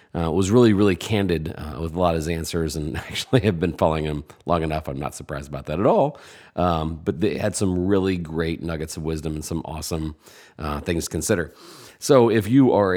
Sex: male